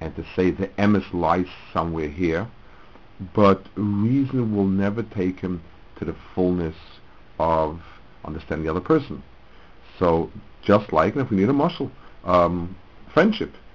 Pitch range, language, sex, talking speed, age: 85-105 Hz, English, male, 145 wpm, 60-79